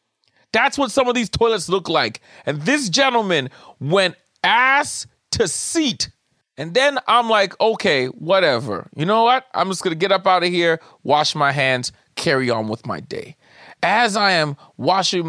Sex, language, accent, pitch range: male, English, American, 150-230 Hz